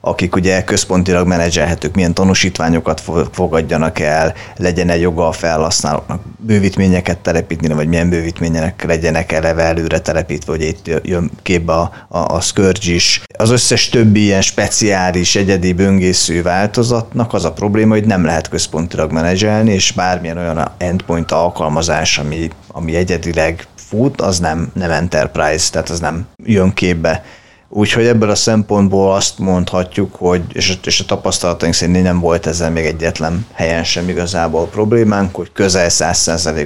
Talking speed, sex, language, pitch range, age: 140 wpm, male, Hungarian, 80-95 Hz, 30-49